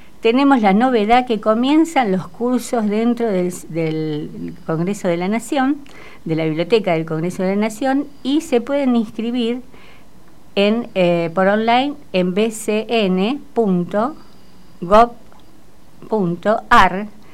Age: 50-69